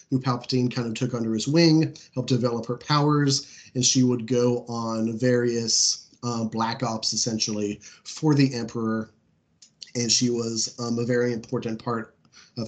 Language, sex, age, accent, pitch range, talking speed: English, male, 30-49, American, 115-135 Hz, 160 wpm